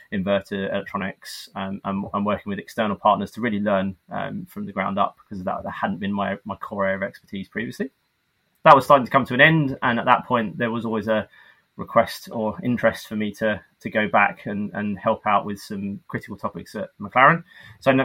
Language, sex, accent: English, male, British